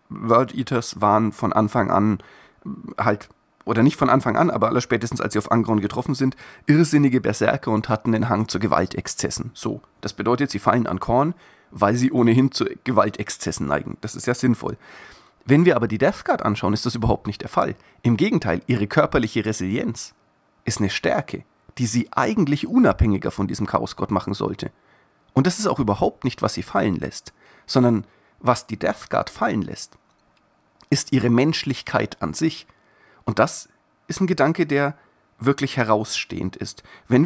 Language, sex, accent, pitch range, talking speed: German, male, German, 110-145 Hz, 170 wpm